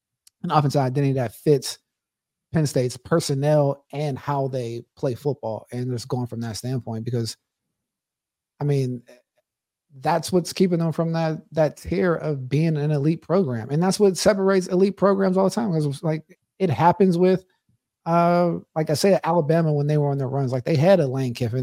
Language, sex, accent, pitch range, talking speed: English, male, American, 130-160 Hz, 185 wpm